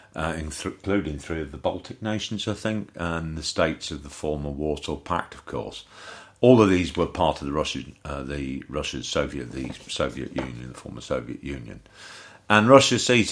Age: 50-69